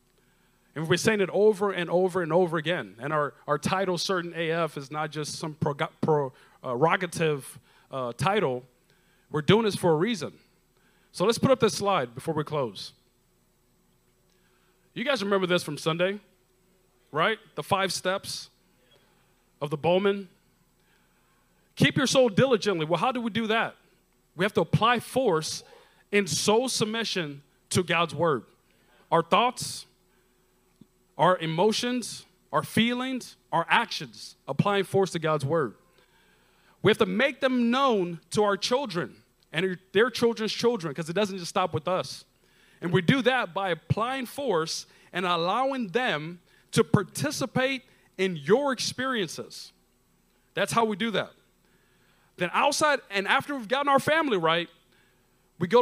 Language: English